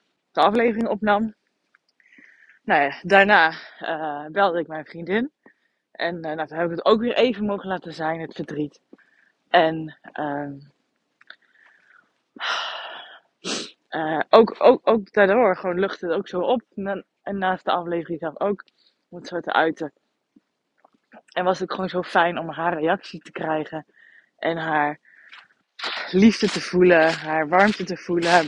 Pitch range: 165-205 Hz